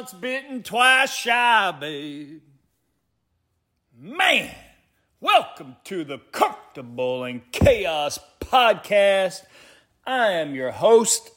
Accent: American